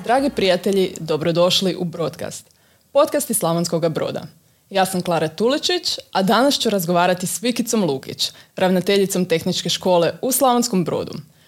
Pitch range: 180-220 Hz